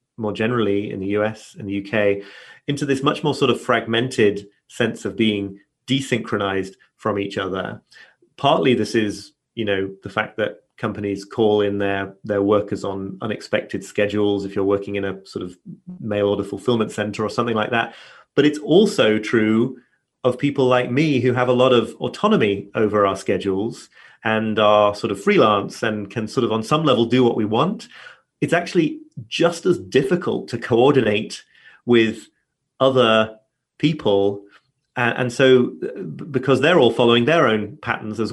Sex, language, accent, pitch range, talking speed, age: male, English, British, 100-125 Hz, 170 wpm, 30-49